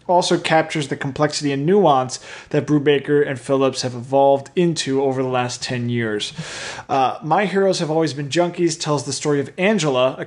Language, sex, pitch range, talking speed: English, male, 135-165 Hz, 180 wpm